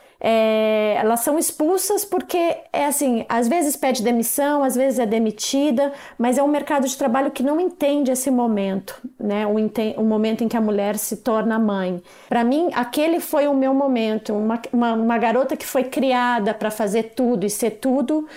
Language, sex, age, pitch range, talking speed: Portuguese, female, 40-59, 220-255 Hz, 190 wpm